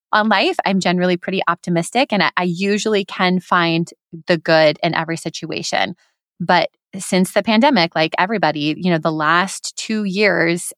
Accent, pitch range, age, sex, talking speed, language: American, 165-200 Hz, 20-39, female, 160 wpm, English